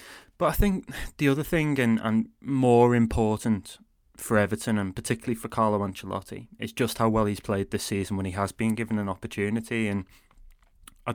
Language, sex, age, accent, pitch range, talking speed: English, male, 20-39, British, 95-115 Hz, 185 wpm